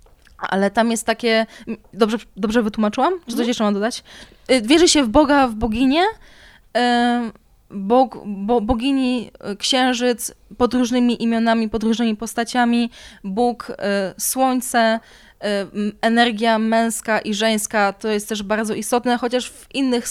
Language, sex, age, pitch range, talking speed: Polish, female, 20-39, 210-245 Hz, 120 wpm